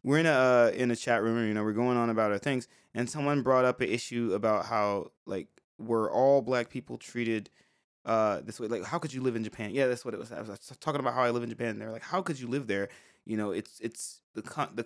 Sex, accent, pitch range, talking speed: male, American, 110-130 Hz, 285 wpm